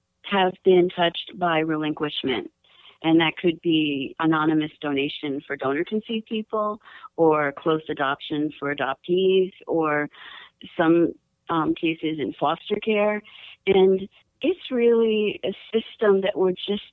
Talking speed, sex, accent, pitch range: 125 wpm, female, American, 155-195 Hz